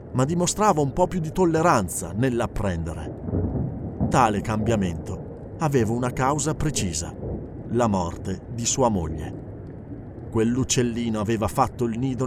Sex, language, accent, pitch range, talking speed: male, Italian, native, 105-145 Hz, 115 wpm